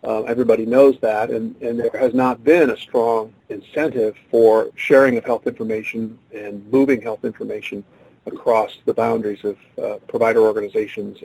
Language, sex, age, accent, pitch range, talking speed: English, male, 50-69, American, 115-165 Hz, 155 wpm